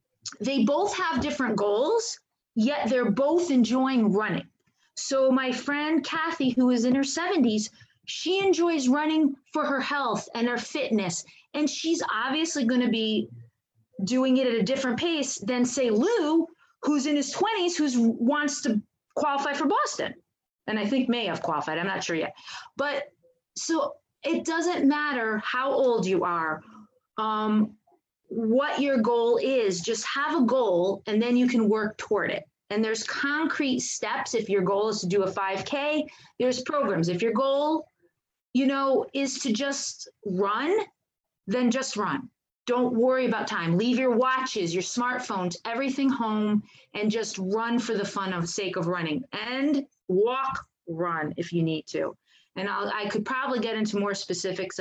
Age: 30-49